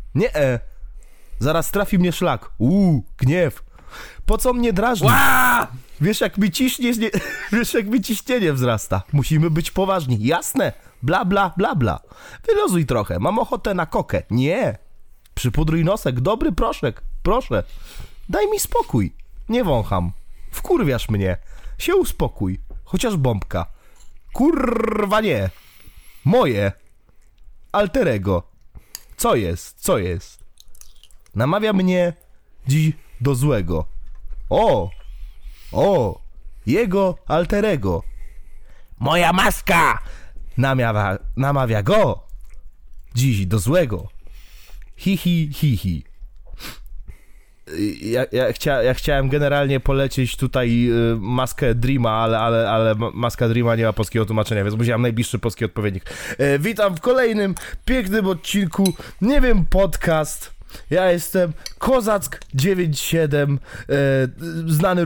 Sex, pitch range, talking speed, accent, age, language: male, 110-185 Hz, 100 wpm, native, 20-39, Polish